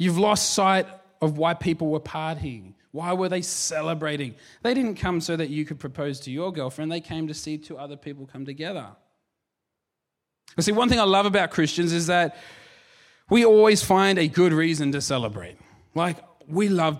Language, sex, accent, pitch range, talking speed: English, male, Australian, 145-210 Hz, 185 wpm